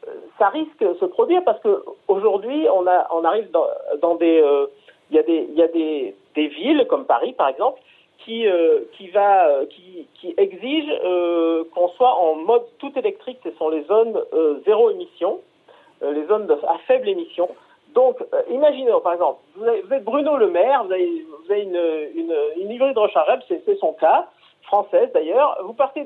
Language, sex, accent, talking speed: French, male, French, 190 wpm